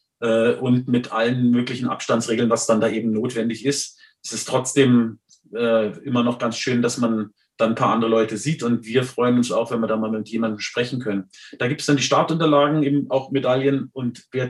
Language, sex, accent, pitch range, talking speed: German, male, German, 115-140 Hz, 210 wpm